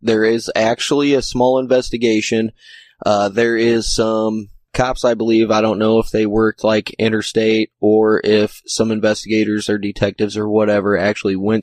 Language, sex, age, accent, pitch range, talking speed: English, male, 20-39, American, 105-120 Hz, 160 wpm